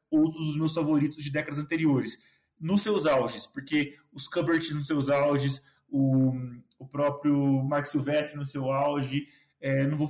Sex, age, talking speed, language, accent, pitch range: male, 20-39, 160 wpm, Portuguese, Brazilian, 140-160 Hz